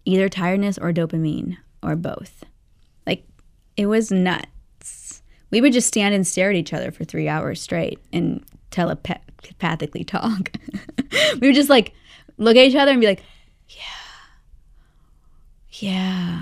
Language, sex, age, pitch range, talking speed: English, female, 20-39, 165-215 Hz, 145 wpm